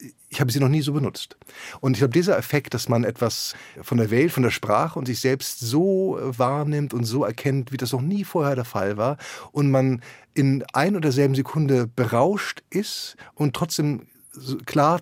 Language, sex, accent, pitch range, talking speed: German, male, German, 115-140 Hz, 195 wpm